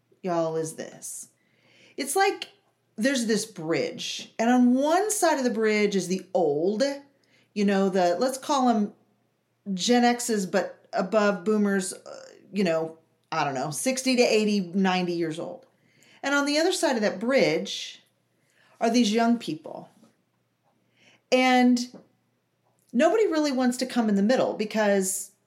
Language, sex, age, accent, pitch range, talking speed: English, female, 40-59, American, 195-270 Hz, 150 wpm